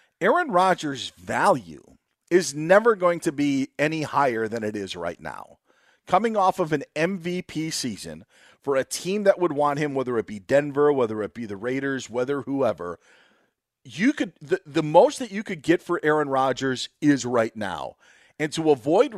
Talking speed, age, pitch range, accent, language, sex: 180 wpm, 40-59, 130-170 Hz, American, English, male